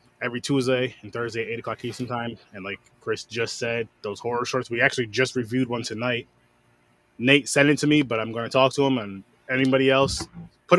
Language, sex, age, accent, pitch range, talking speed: English, male, 20-39, American, 110-135 Hz, 215 wpm